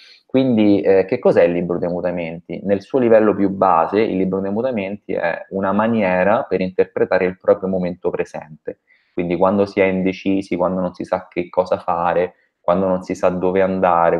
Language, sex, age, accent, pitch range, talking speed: Italian, male, 20-39, native, 85-100 Hz, 185 wpm